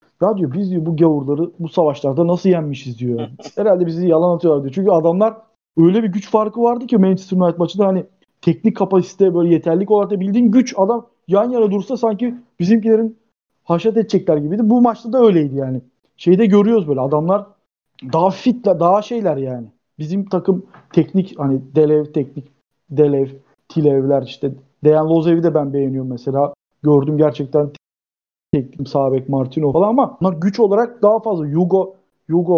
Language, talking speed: Turkish, 160 wpm